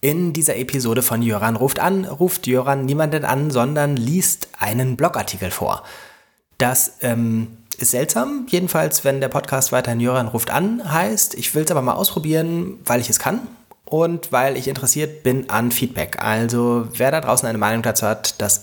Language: German